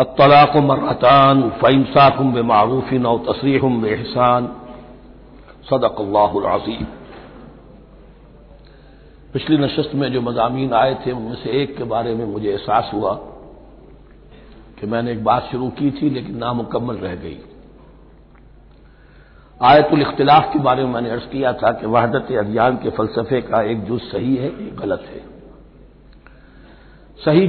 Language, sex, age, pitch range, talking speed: Hindi, male, 60-79, 120-145 Hz, 120 wpm